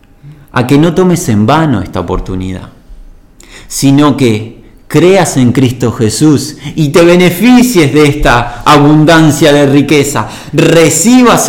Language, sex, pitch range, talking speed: Spanish, male, 150-190 Hz, 120 wpm